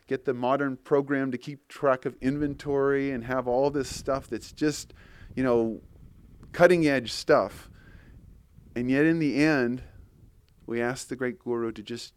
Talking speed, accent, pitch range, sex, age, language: 165 wpm, American, 115-150 Hz, male, 40-59, English